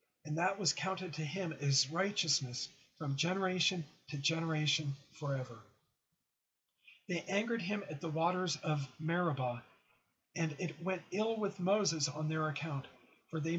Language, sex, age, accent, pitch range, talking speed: English, male, 40-59, American, 145-180 Hz, 140 wpm